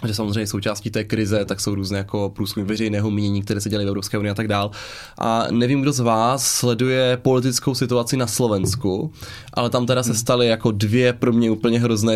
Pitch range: 110-135 Hz